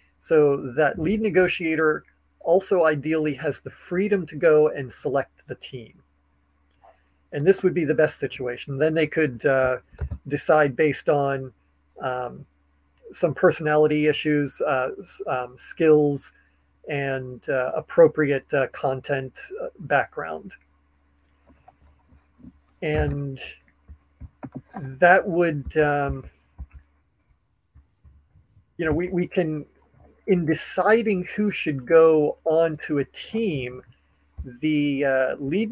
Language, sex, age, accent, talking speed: English, male, 40-59, American, 105 wpm